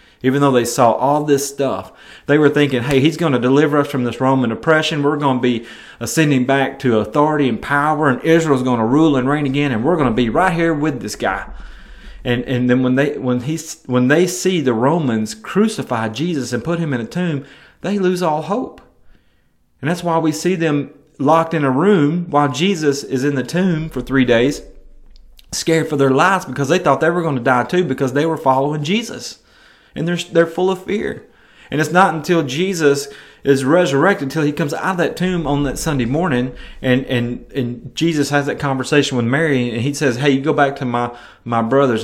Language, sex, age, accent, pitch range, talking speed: English, male, 30-49, American, 125-160 Hz, 220 wpm